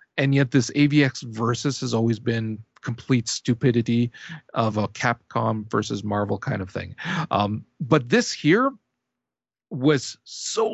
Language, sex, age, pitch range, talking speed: English, male, 40-59, 120-175 Hz, 135 wpm